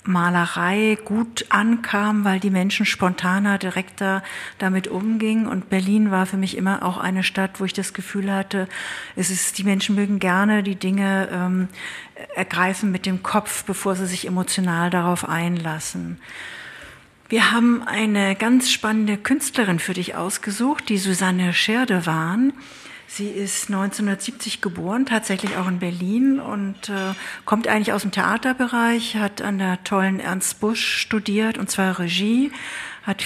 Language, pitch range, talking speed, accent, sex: German, 185-215 Hz, 150 wpm, German, female